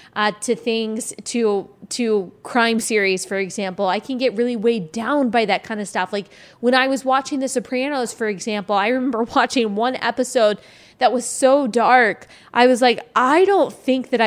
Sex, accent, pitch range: female, American, 210-255 Hz